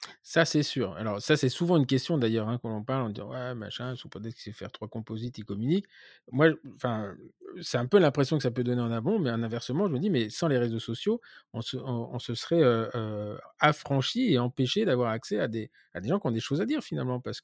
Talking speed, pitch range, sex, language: 270 wpm, 115-140 Hz, male, French